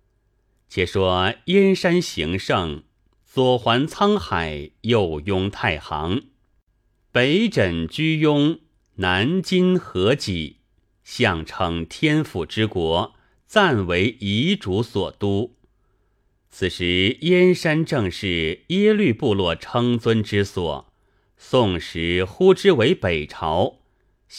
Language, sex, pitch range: Chinese, male, 95-125 Hz